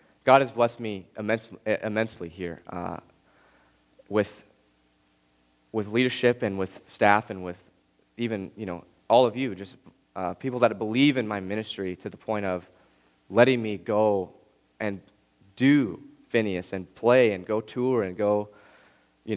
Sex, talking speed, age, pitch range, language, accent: male, 150 wpm, 30-49, 90-110 Hz, English, American